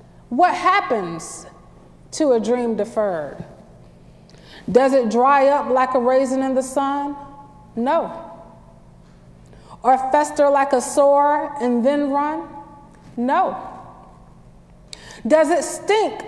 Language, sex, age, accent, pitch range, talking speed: English, female, 30-49, American, 220-290 Hz, 105 wpm